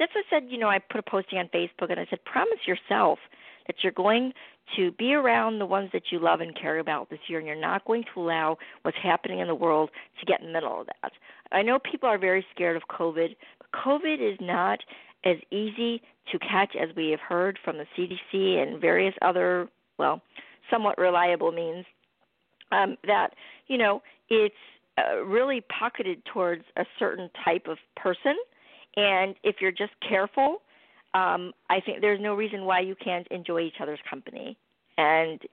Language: English